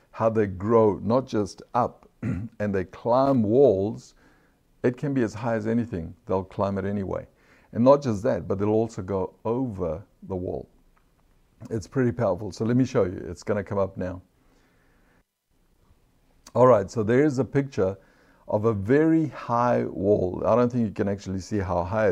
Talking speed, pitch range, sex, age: 180 wpm, 95-115 Hz, male, 60-79